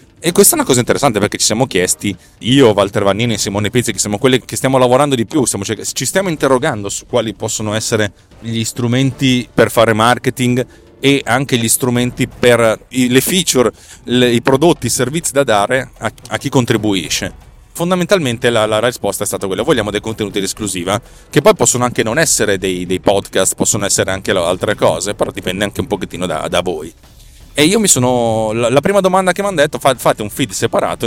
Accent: native